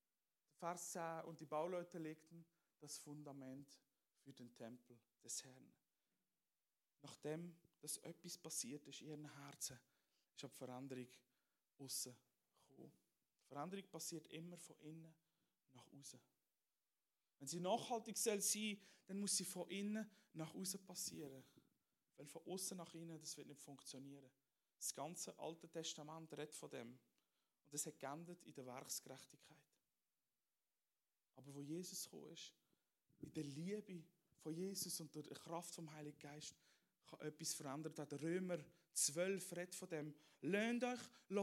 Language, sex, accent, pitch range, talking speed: German, male, Austrian, 145-185 Hz, 140 wpm